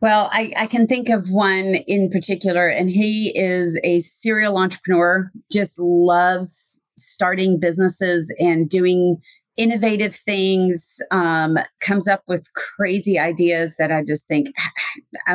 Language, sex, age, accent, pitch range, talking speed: English, female, 30-49, American, 175-225 Hz, 135 wpm